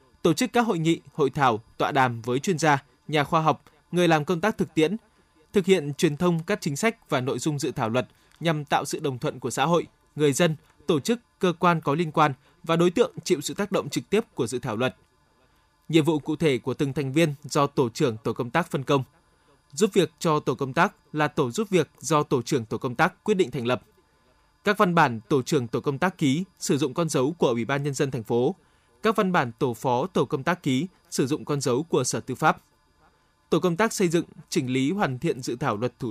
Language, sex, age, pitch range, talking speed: Vietnamese, male, 20-39, 140-175 Hz, 250 wpm